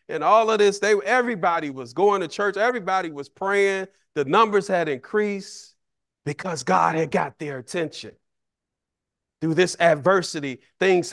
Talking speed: 145 wpm